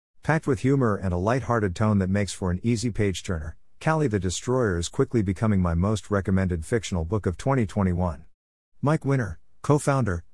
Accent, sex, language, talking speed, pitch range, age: American, male, English, 170 wpm, 90-115 Hz, 50-69